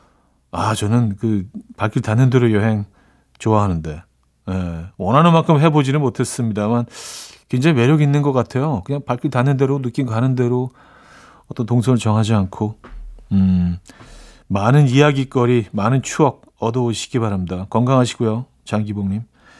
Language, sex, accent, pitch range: Korean, male, native, 110-155 Hz